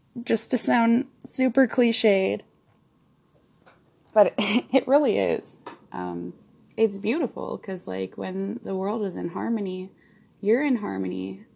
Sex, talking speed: female, 120 wpm